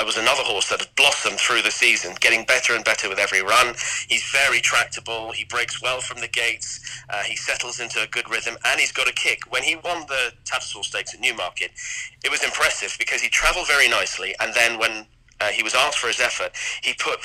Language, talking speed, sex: English, 225 wpm, male